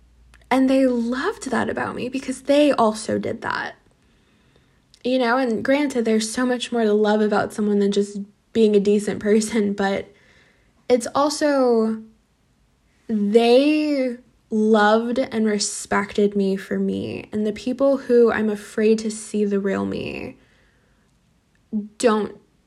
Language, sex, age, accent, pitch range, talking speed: English, female, 10-29, American, 205-240 Hz, 135 wpm